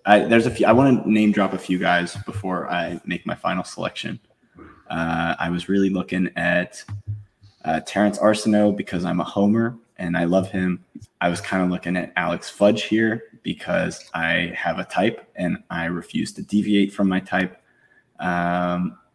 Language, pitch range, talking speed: English, 90-110 Hz, 170 wpm